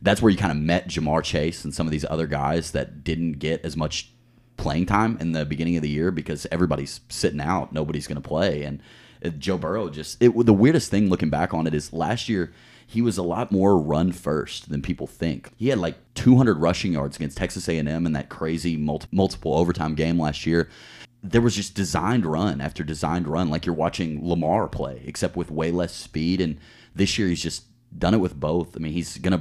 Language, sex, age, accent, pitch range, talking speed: English, male, 30-49, American, 75-95 Hz, 220 wpm